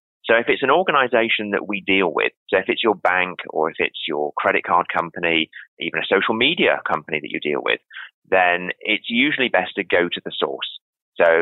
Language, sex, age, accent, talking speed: English, male, 30-49, British, 210 wpm